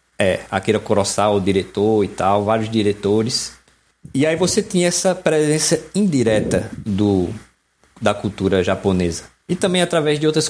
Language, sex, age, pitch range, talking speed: Portuguese, male, 20-39, 105-145 Hz, 135 wpm